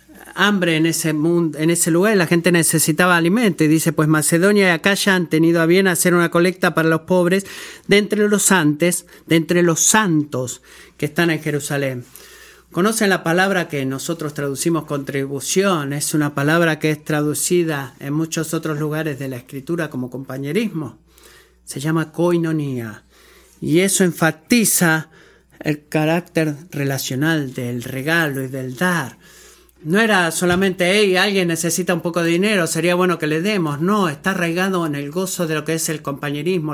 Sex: male